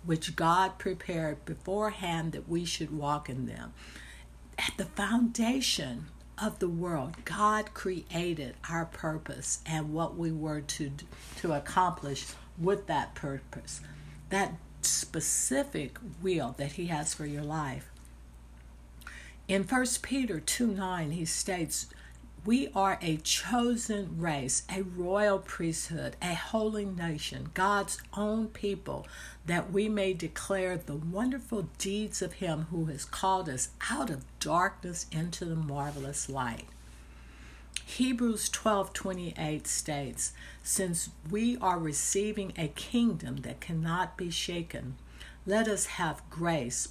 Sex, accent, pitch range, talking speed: female, American, 140-195 Hz, 125 wpm